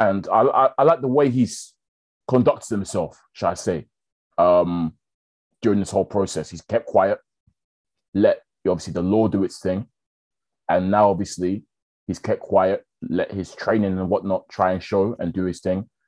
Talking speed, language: 170 wpm, English